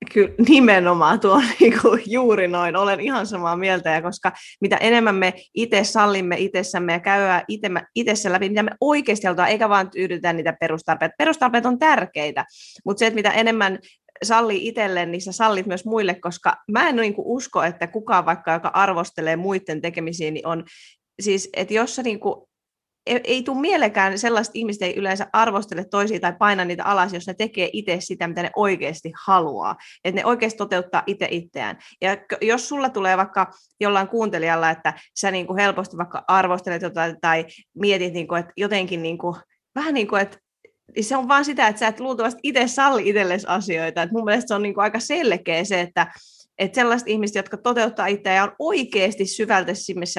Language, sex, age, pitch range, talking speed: Finnish, female, 30-49, 175-225 Hz, 175 wpm